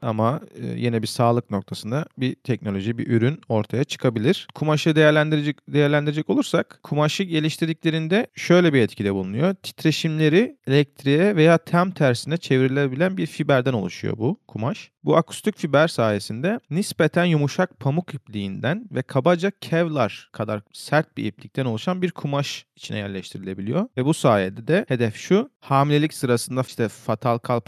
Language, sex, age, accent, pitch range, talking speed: Turkish, male, 40-59, native, 115-160 Hz, 135 wpm